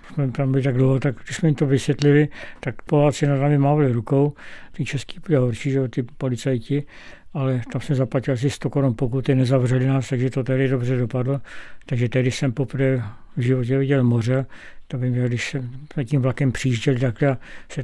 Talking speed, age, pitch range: 185 wpm, 60-79, 125-140 Hz